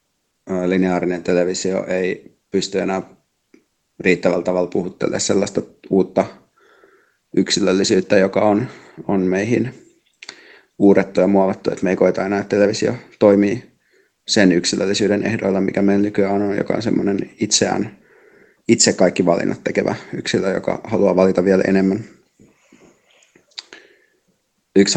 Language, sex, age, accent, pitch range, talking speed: Finnish, male, 30-49, native, 95-100 Hz, 115 wpm